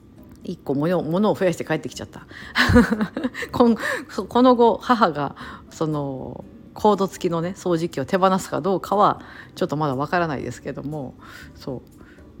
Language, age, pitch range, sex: Japanese, 50-69, 145-235 Hz, female